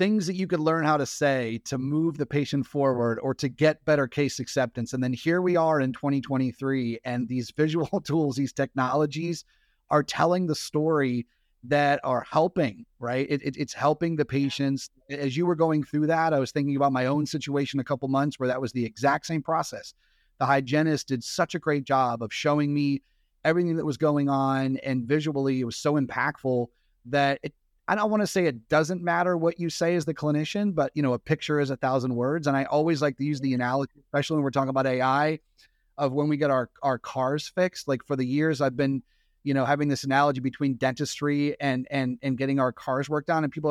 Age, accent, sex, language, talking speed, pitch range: 30-49, American, male, English, 215 wpm, 135-155 Hz